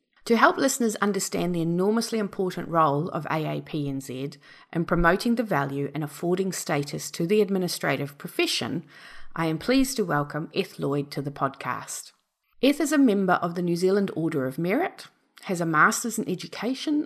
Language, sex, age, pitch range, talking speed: English, female, 40-59, 150-215 Hz, 165 wpm